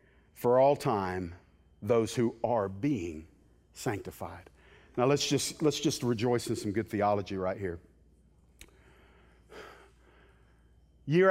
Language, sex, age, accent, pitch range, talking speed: English, male, 50-69, American, 100-145 Hz, 110 wpm